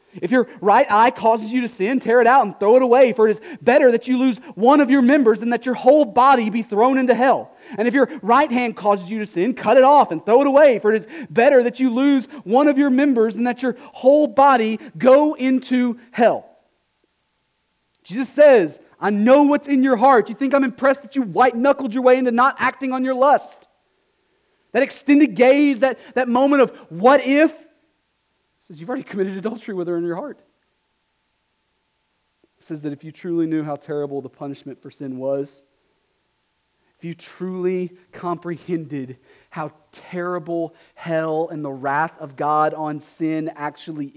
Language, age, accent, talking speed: English, 40-59, American, 190 wpm